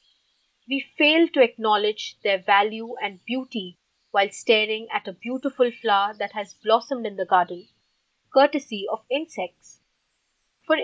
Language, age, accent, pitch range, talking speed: English, 30-49, Indian, 205-250 Hz, 135 wpm